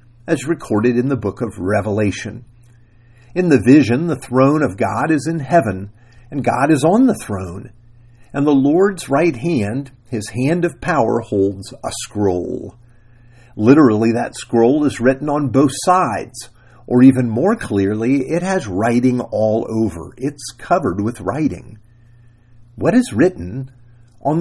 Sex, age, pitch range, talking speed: male, 50-69, 115-140 Hz, 145 wpm